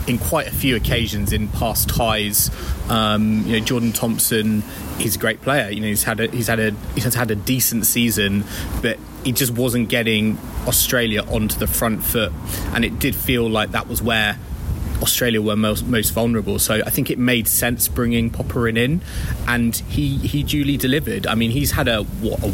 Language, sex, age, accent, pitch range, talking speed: English, male, 20-39, British, 105-125 Hz, 195 wpm